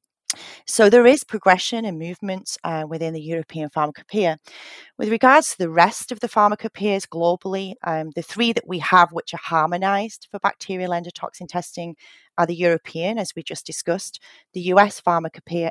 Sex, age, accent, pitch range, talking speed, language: female, 30-49, British, 160-205 Hz, 160 wpm, English